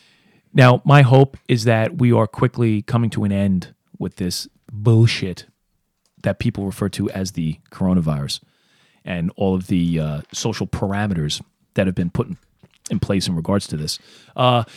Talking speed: 160 wpm